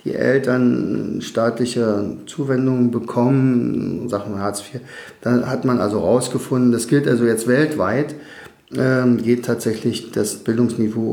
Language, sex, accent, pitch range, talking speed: German, male, German, 110-135 Hz, 115 wpm